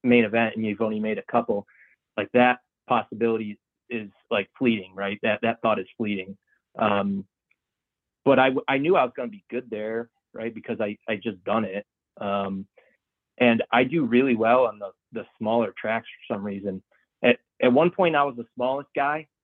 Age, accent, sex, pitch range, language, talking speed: 30-49, American, male, 105-125 Hz, English, 190 wpm